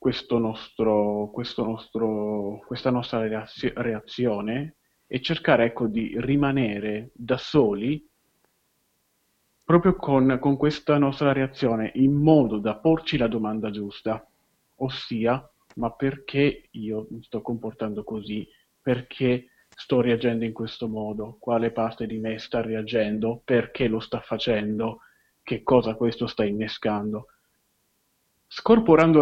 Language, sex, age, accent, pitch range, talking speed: Italian, male, 30-49, native, 110-140 Hz, 115 wpm